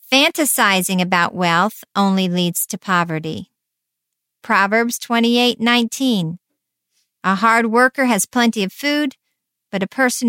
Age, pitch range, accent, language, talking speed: 50-69, 195-250 Hz, American, English, 110 wpm